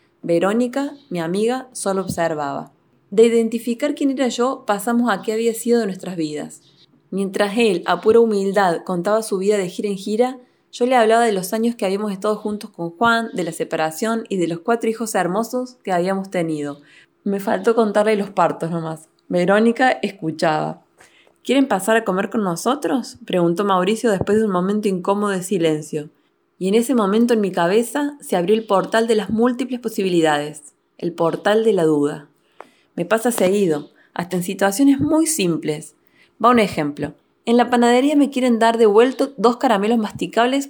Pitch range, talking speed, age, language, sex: 180-235 Hz, 175 wpm, 20-39, Spanish, female